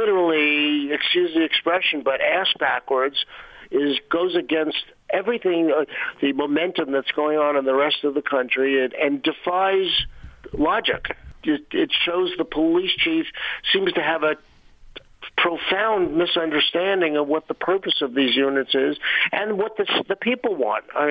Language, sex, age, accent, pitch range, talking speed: English, male, 50-69, American, 140-180 Hz, 150 wpm